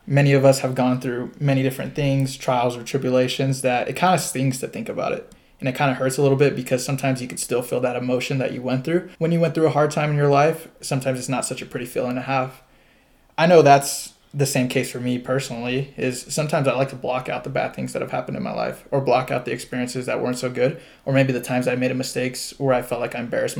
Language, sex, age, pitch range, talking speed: English, male, 20-39, 125-140 Hz, 270 wpm